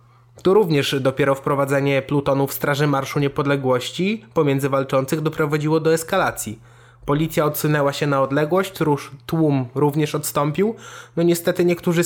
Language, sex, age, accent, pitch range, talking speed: Polish, male, 20-39, native, 130-160 Hz, 120 wpm